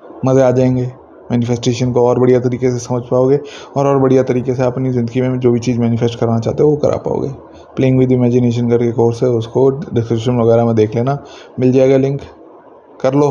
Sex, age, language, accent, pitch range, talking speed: male, 20-39, Hindi, native, 120-130 Hz, 210 wpm